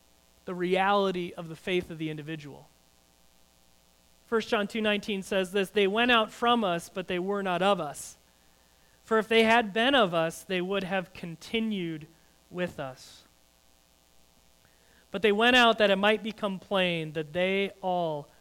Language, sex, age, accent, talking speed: English, male, 40-59, American, 160 wpm